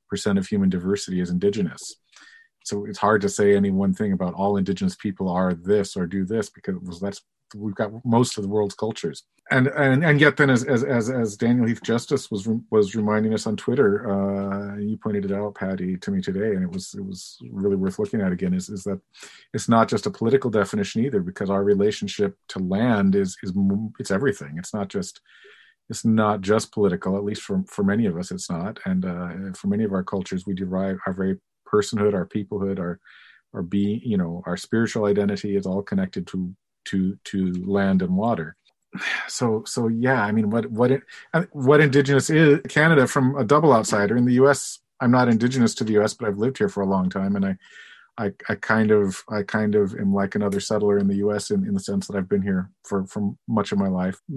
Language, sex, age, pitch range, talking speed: English, male, 40-59, 100-155 Hz, 220 wpm